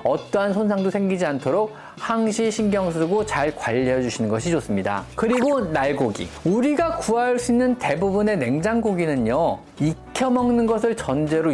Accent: native